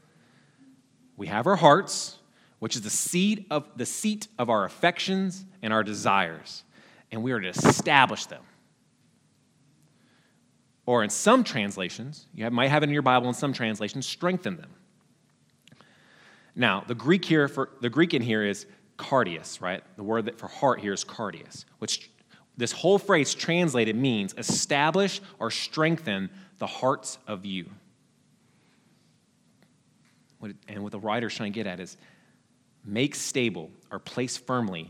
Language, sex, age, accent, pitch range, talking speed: English, male, 30-49, American, 110-150 Hz, 150 wpm